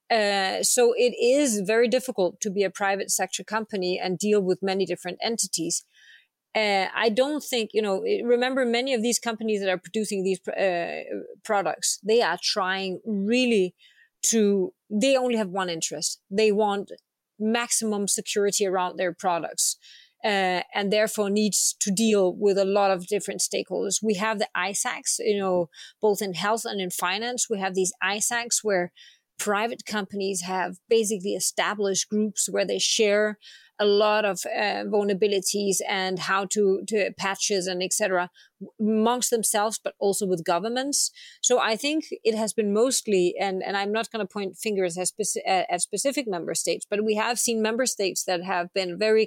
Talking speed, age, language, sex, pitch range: 165 wpm, 30-49, English, female, 190-225 Hz